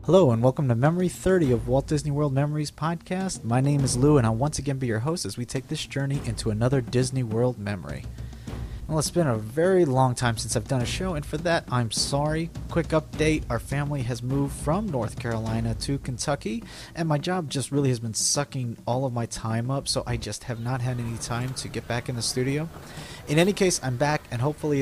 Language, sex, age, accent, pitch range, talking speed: English, male, 30-49, American, 120-155 Hz, 230 wpm